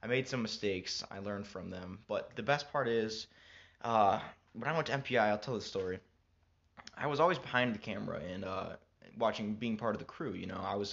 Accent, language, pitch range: American, English, 95-115 Hz